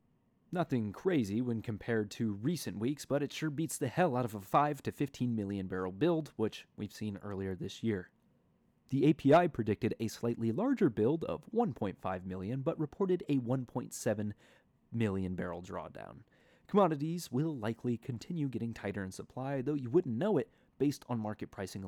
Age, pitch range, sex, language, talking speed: 30-49, 100-145 Hz, male, English, 170 wpm